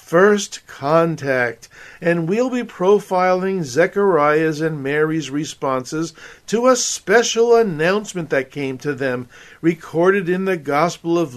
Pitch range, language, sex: 145-190 Hz, English, male